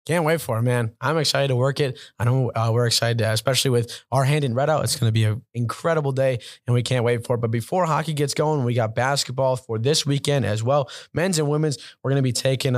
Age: 20-39